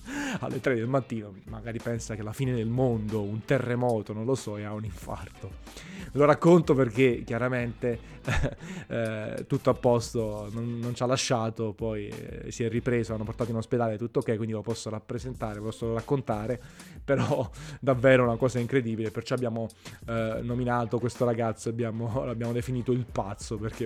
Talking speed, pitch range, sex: 170 wpm, 110-130 Hz, male